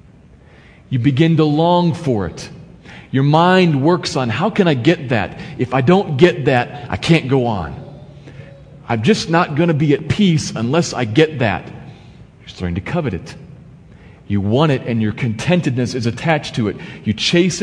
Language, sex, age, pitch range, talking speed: English, male, 40-59, 130-175 Hz, 180 wpm